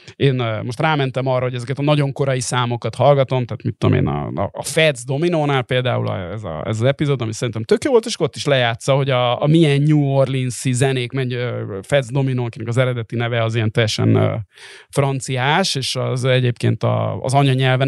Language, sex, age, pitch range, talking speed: Hungarian, male, 30-49, 120-145 Hz, 190 wpm